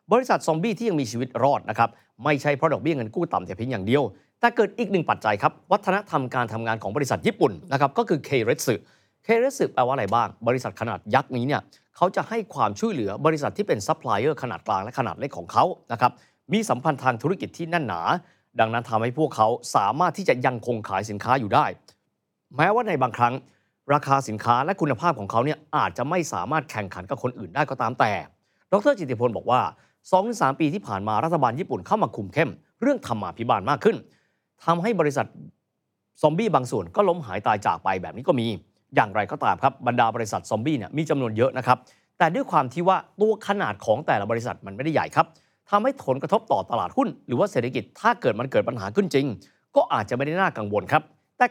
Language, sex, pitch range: Thai, male, 120-195 Hz